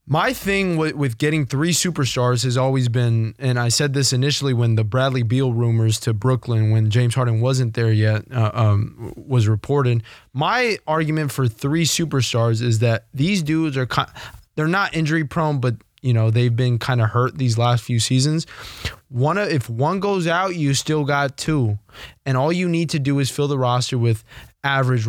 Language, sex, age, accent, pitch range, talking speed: English, male, 20-39, American, 115-145 Hz, 190 wpm